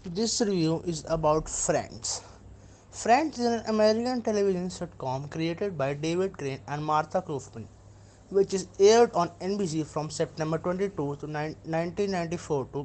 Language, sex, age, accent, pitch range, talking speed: English, male, 20-39, Indian, 115-195 Hz, 120 wpm